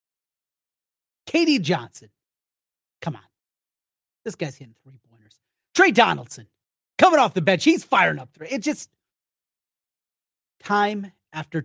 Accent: American